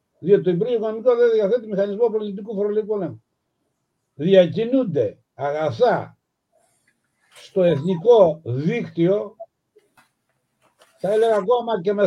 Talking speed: 100 wpm